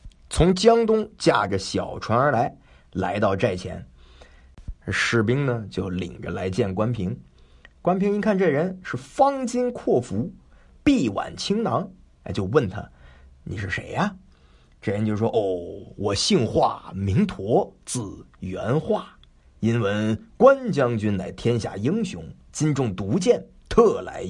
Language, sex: Chinese, male